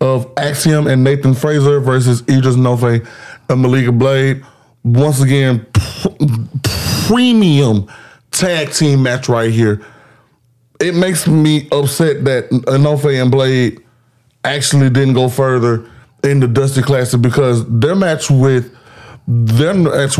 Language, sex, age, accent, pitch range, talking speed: English, male, 30-49, American, 115-140 Hz, 130 wpm